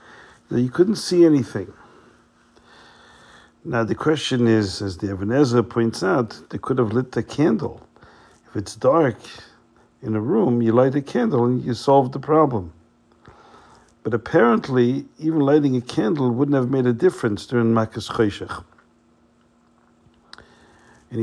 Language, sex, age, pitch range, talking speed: English, male, 50-69, 105-130 Hz, 140 wpm